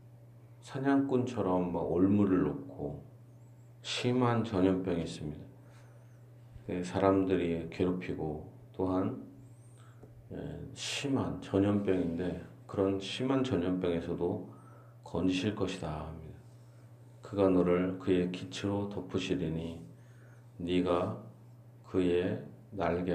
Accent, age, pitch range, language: native, 40-59, 90-120 Hz, Korean